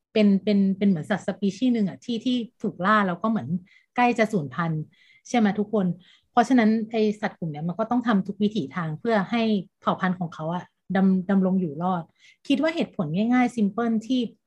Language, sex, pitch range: Thai, female, 175-230 Hz